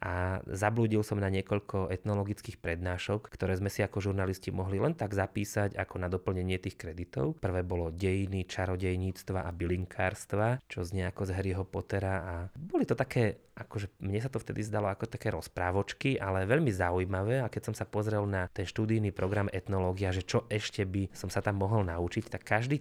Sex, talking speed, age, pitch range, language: male, 185 wpm, 20-39, 90-105 Hz, Slovak